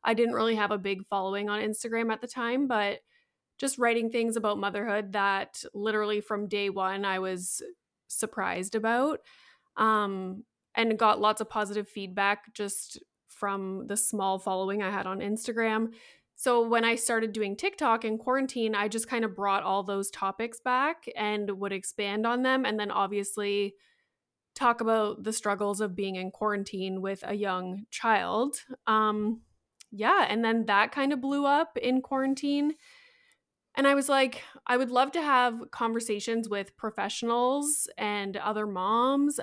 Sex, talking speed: female, 160 wpm